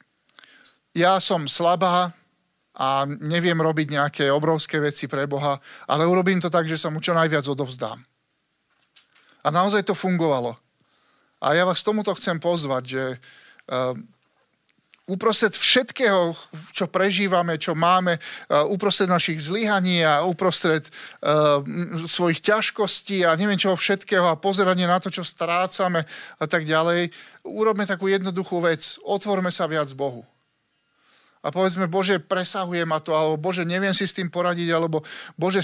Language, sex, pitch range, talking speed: Slovak, male, 160-190 Hz, 140 wpm